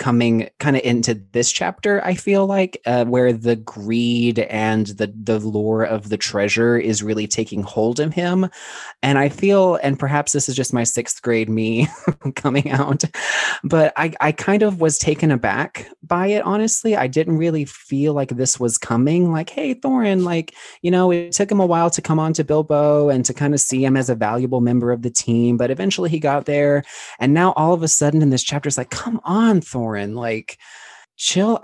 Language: English